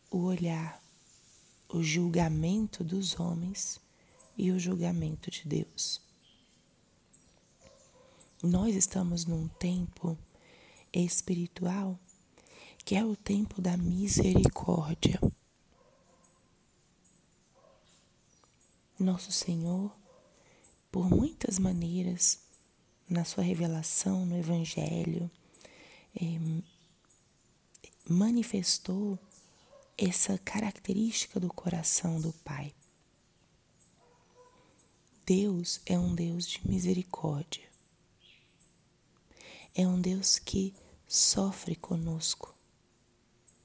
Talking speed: 70 wpm